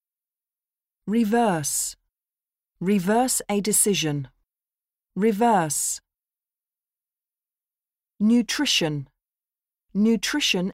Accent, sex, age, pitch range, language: British, female, 50-69, 150-225 Hz, Japanese